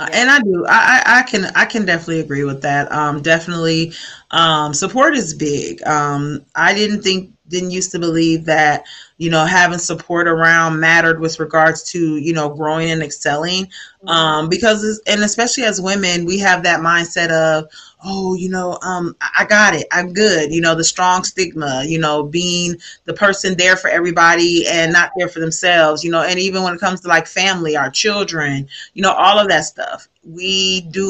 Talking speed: 195 wpm